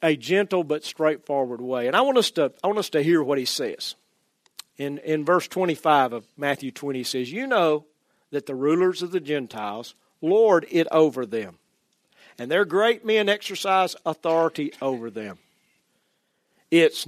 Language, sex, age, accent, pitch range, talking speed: English, male, 50-69, American, 150-235 Hz, 170 wpm